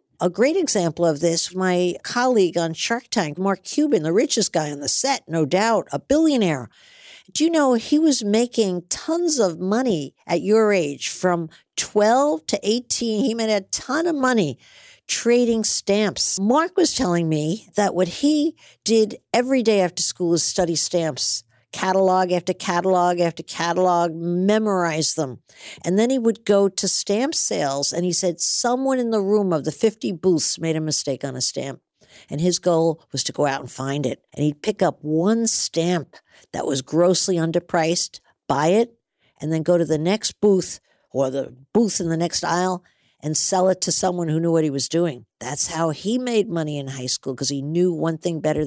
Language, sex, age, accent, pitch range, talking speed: English, female, 50-69, American, 155-210 Hz, 190 wpm